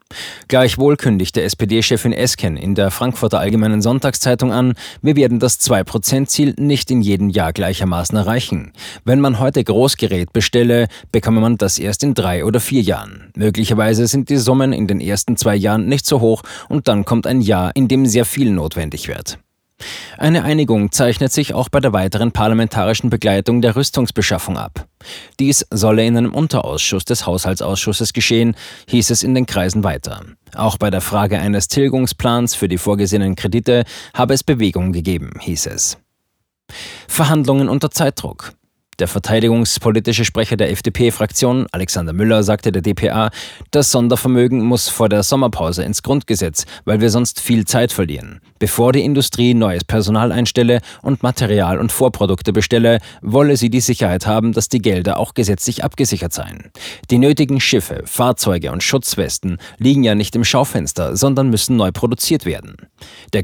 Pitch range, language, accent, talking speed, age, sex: 100-125 Hz, German, German, 160 wpm, 20-39, male